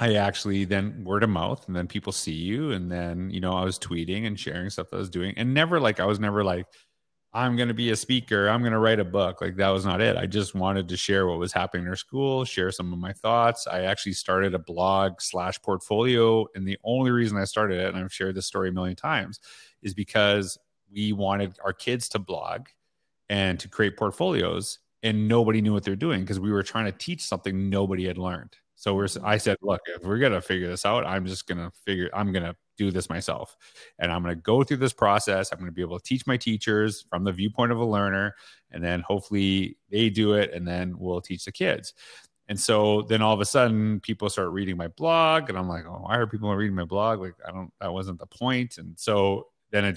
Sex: male